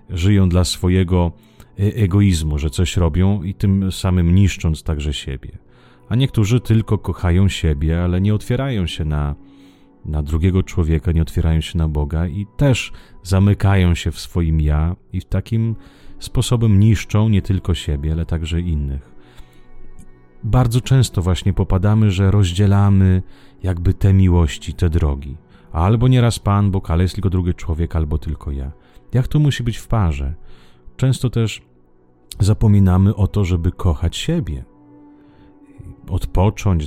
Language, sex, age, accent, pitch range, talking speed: Italian, male, 30-49, Polish, 80-100 Hz, 145 wpm